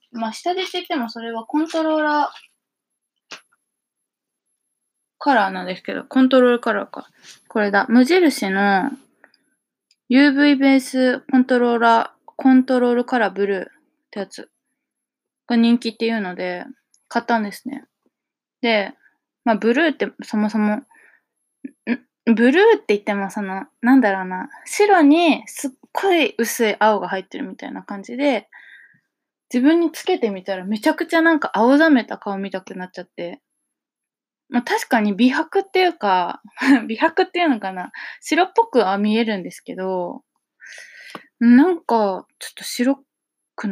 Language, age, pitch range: Japanese, 20-39, 210-300 Hz